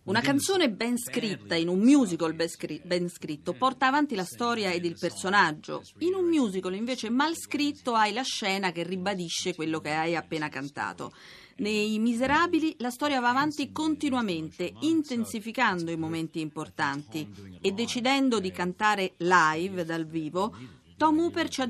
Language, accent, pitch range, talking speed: Italian, native, 175-260 Hz, 150 wpm